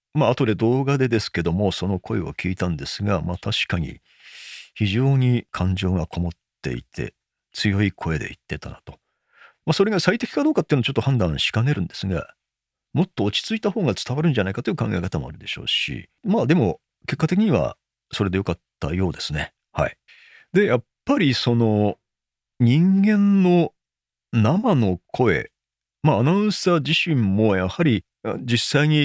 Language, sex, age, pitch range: Japanese, male, 40-59, 95-155 Hz